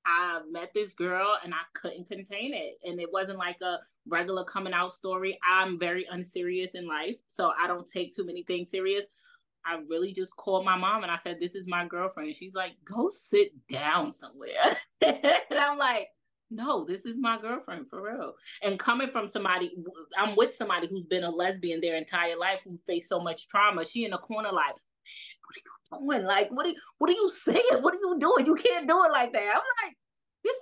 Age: 20-39